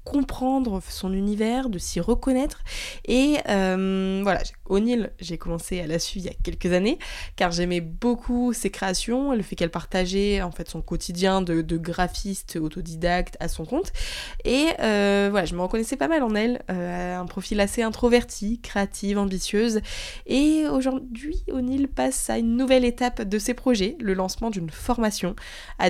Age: 20-39